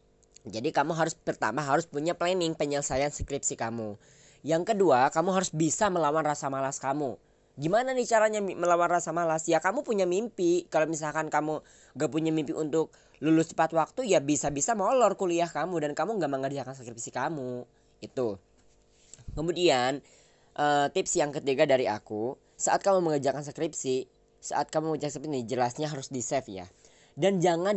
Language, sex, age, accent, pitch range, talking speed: Indonesian, female, 20-39, native, 135-170 Hz, 160 wpm